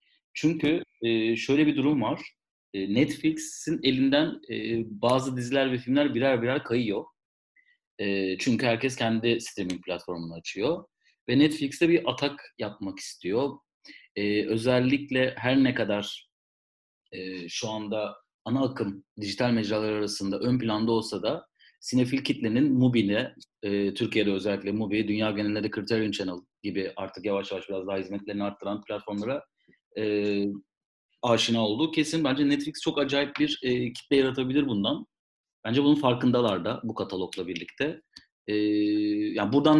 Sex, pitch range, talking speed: male, 105-145 Hz, 125 wpm